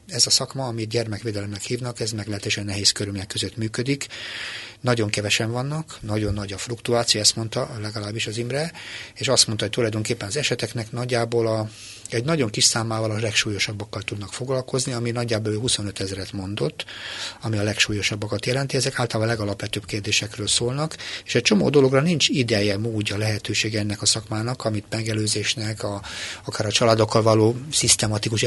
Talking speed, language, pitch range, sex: 160 wpm, Hungarian, 105-120 Hz, male